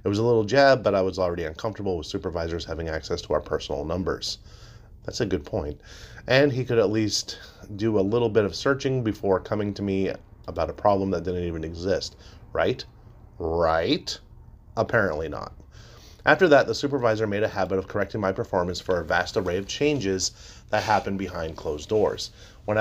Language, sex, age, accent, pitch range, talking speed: English, male, 30-49, American, 95-110 Hz, 185 wpm